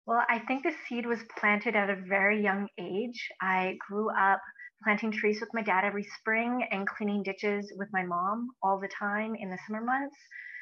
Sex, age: female, 30-49